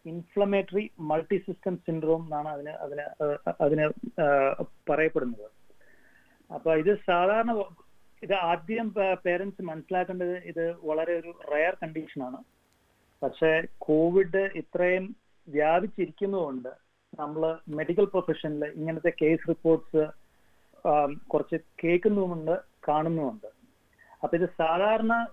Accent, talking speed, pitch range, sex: native, 90 wpm, 145-180 Hz, male